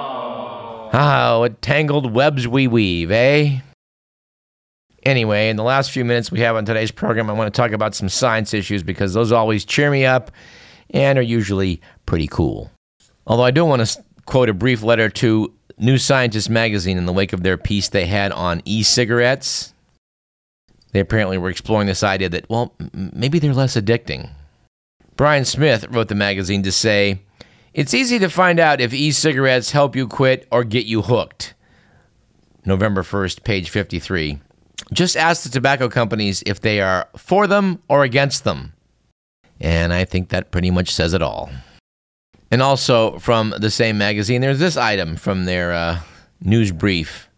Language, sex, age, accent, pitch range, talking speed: English, male, 50-69, American, 95-130 Hz, 170 wpm